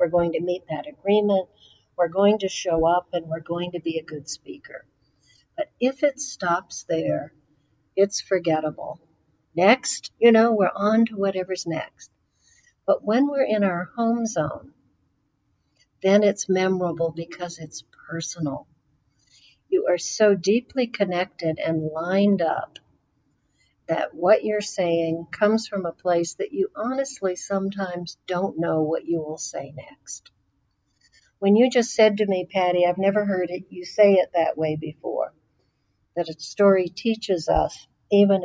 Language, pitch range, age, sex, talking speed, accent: English, 165-215 Hz, 60-79, female, 150 wpm, American